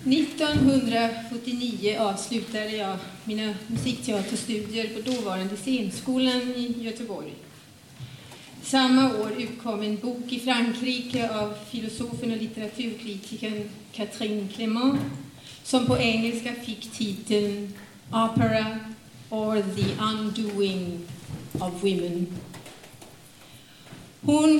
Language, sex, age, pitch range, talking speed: Swedish, female, 40-59, 205-240 Hz, 90 wpm